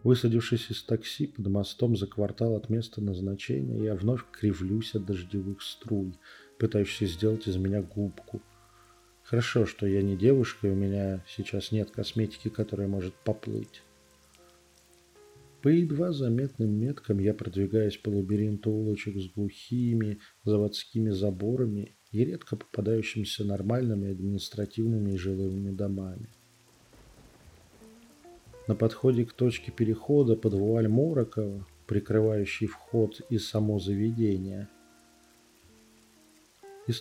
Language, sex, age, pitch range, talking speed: Russian, male, 40-59, 100-115 Hz, 115 wpm